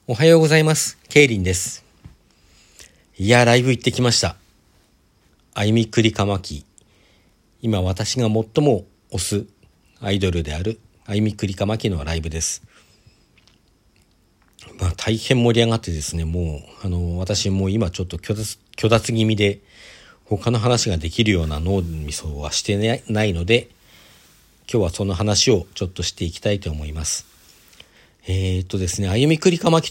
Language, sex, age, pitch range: Japanese, male, 50-69, 90-120 Hz